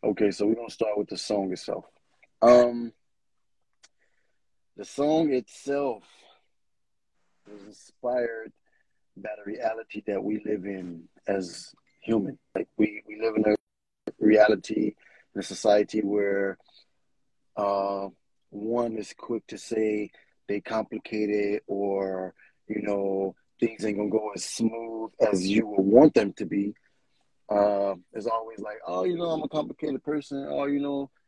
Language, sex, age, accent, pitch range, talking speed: English, male, 30-49, American, 105-135 Hz, 140 wpm